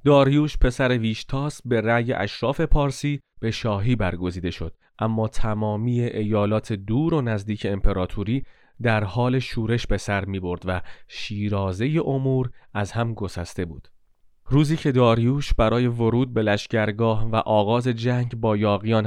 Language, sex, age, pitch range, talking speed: Persian, male, 30-49, 105-135 Hz, 140 wpm